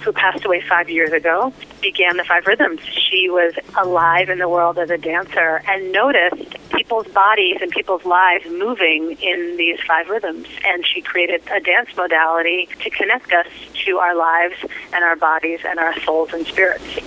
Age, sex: 30-49, female